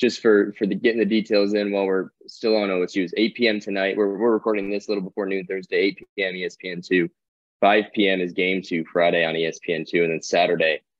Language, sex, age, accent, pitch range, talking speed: English, male, 20-39, American, 85-105 Hz, 220 wpm